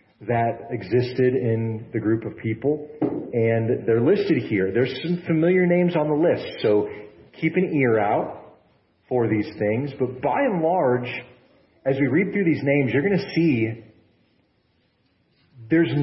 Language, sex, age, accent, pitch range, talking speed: English, male, 40-59, American, 115-155 Hz, 155 wpm